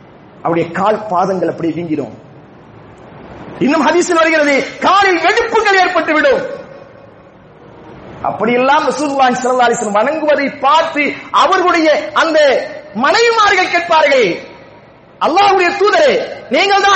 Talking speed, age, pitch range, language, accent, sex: 120 wpm, 30-49, 230-370 Hz, English, Indian, male